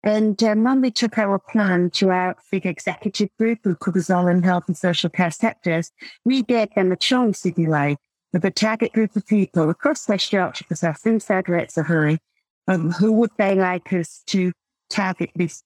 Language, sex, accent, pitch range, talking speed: English, female, British, 170-215 Hz, 200 wpm